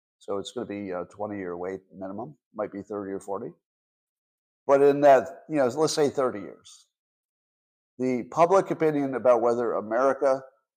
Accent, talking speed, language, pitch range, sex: American, 160 wpm, English, 105-140 Hz, male